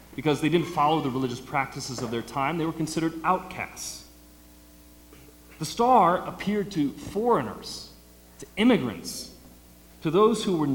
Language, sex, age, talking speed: English, male, 40-59, 140 wpm